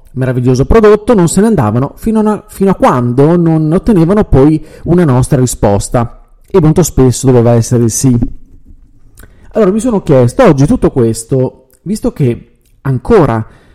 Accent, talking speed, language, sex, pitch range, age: native, 145 wpm, Italian, male, 125-180 Hz, 40-59